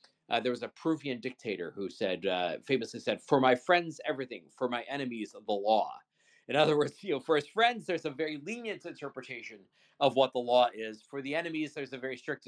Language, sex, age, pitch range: English, male, 50-69, 125-155 Hz